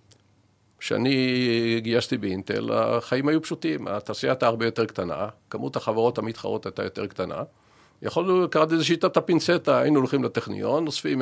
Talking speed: 140 wpm